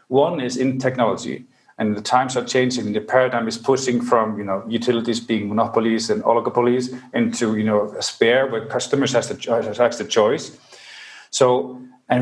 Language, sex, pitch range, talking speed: English, male, 120-140 Hz, 165 wpm